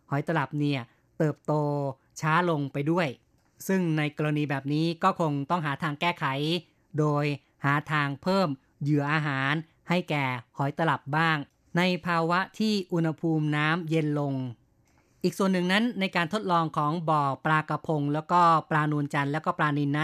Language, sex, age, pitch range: Thai, female, 30-49, 140-165 Hz